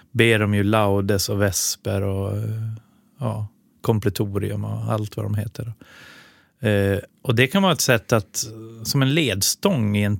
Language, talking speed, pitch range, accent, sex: Swedish, 160 wpm, 105-125 Hz, native, male